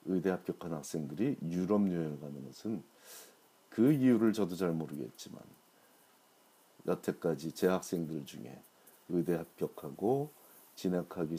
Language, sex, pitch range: Korean, male, 80-95 Hz